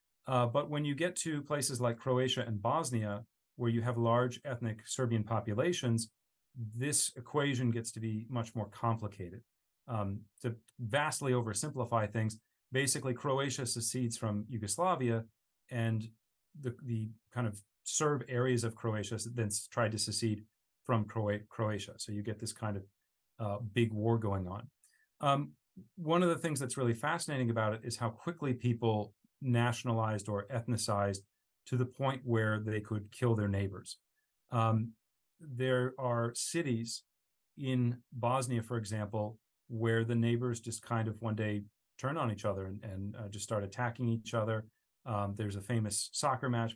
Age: 40-59